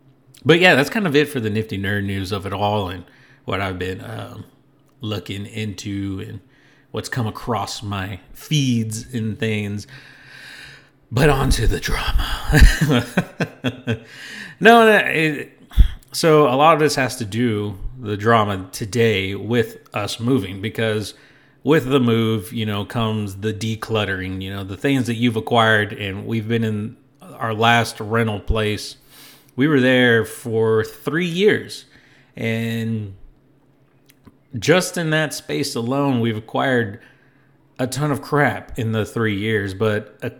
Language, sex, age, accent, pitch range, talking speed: English, male, 40-59, American, 105-140 Hz, 145 wpm